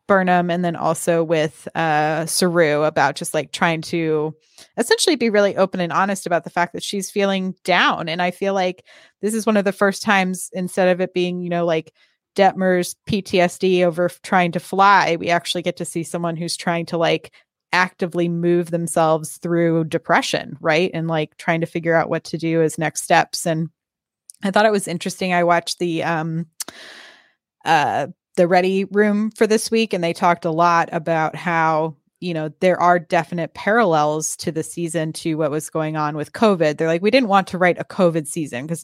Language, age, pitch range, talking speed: English, 20-39, 160-185 Hz, 200 wpm